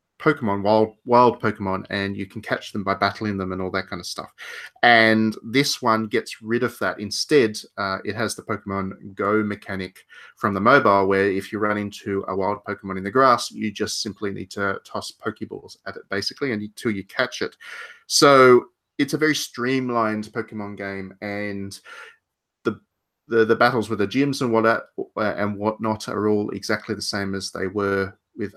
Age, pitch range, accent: 30-49, 100-115 Hz, Australian